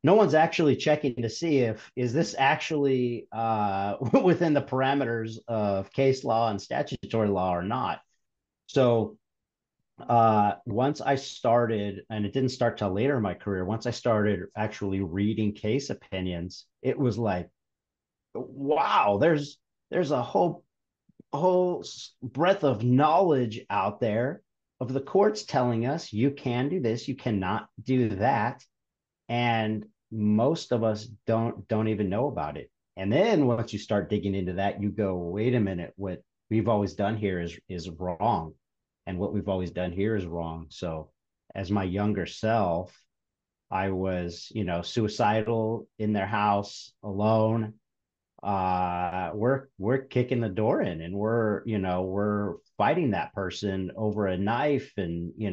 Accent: American